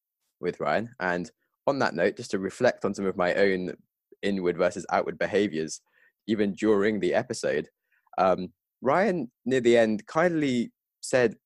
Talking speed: 150 wpm